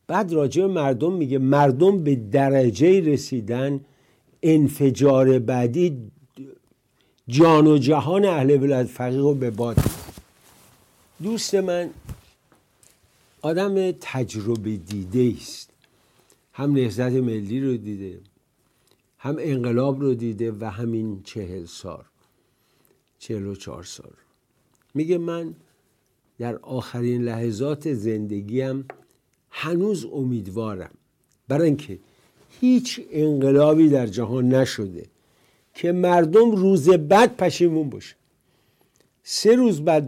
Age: 60-79